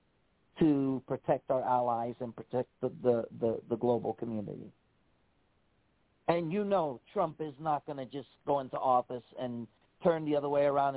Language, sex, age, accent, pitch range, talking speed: English, male, 40-59, American, 140-170 Hz, 155 wpm